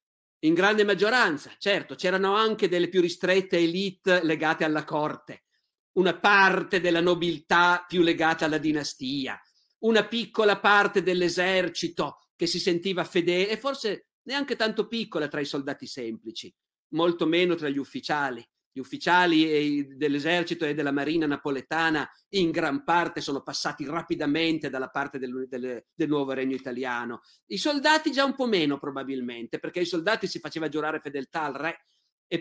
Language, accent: Italian, native